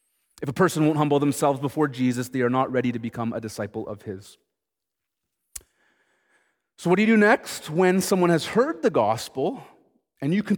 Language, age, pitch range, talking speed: English, 30-49, 130-175 Hz, 185 wpm